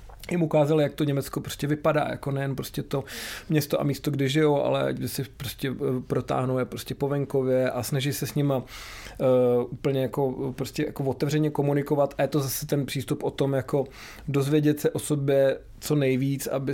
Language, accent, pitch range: Czech, native, 125-150 Hz